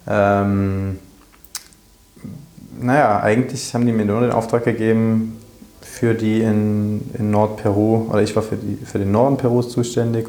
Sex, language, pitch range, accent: male, German, 100-115 Hz, German